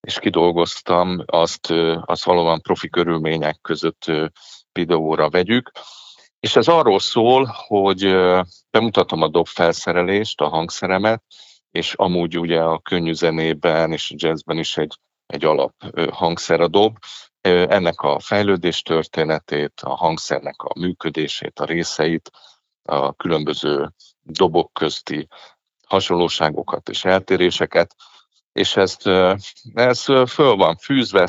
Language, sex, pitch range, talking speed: Hungarian, male, 80-95 Hz, 115 wpm